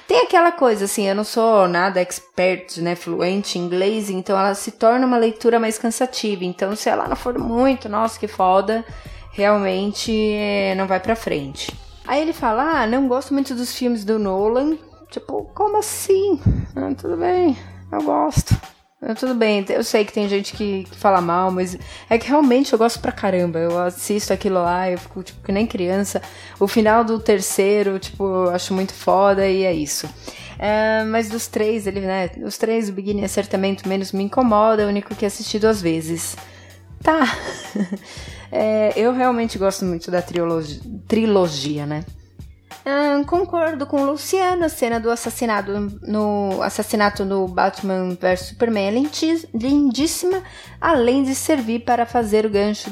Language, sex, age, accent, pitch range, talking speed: Portuguese, female, 20-39, Brazilian, 195-245 Hz, 170 wpm